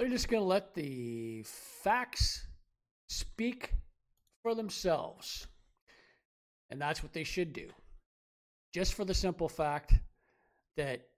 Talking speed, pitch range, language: 120 wpm, 130-175 Hz, English